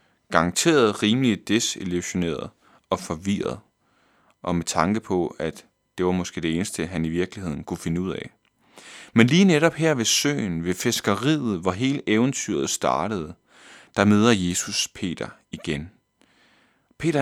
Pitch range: 90-120 Hz